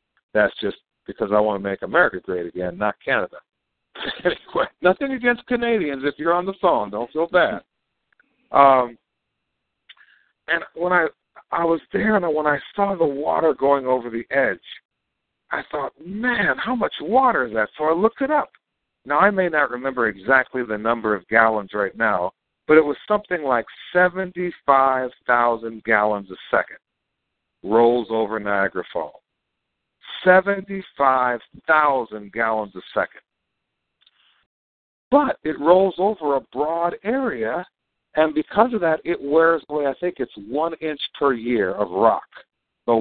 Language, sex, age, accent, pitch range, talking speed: English, male, 60-79, American, 115-180 Hz, 150 wpm